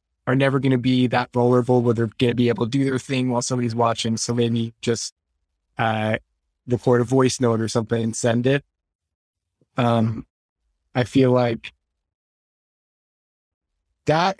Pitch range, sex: 110-140 Hz, male